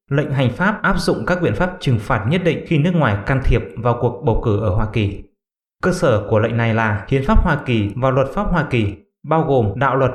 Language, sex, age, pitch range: English, male, 20-39, 115-155 Hz